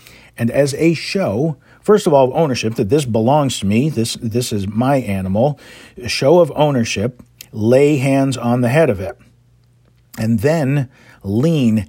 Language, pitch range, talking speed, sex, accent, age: English, 115-135 Hz, 165 wpm, male, American, 40-59